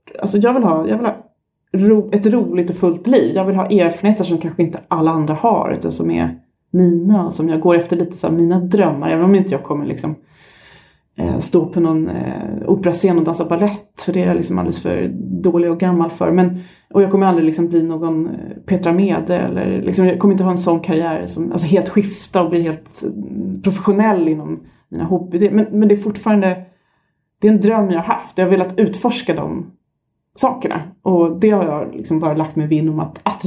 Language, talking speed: Swedish, 210 wpm